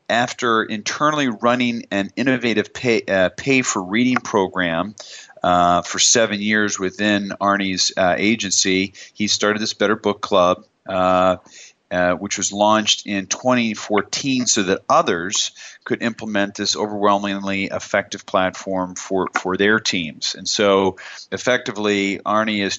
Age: 40-59